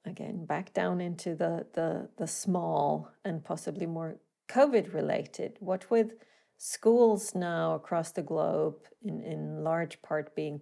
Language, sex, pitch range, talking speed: English, female, 165-210 Hz, 135 wpm